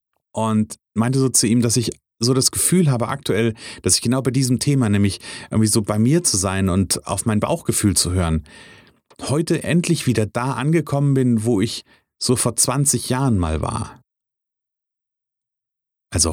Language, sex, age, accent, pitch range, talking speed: German, male, 40-59, German, 110-130 Hz, 170 wpm